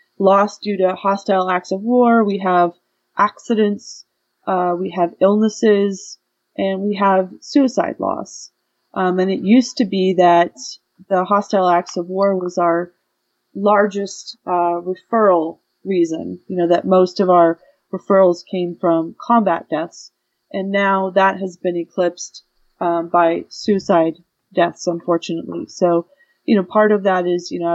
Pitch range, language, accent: 175-200 Hz, English, American